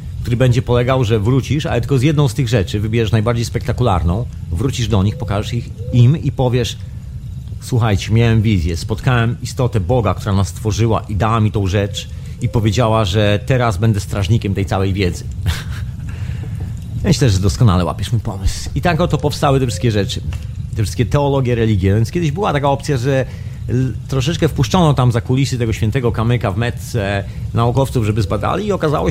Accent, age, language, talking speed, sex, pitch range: native, 30-49, Polish, 175 wpm, male, 105-130 Hz